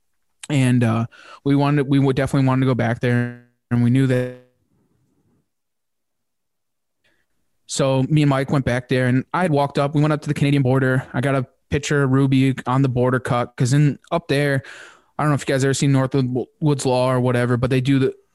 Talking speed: 215 wpm